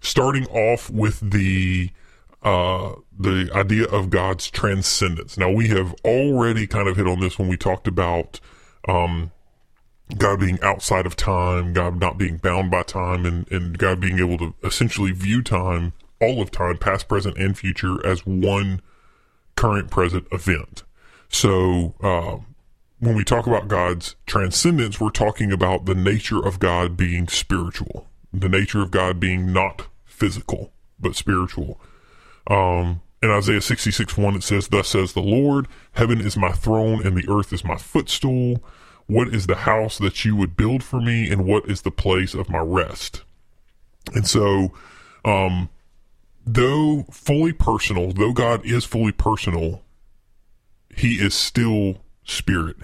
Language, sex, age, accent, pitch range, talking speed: English, female, 40-59, American, 90-110 Hz, 155 wpm